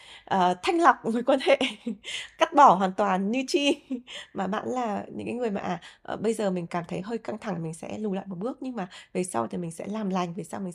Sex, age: female, 20-39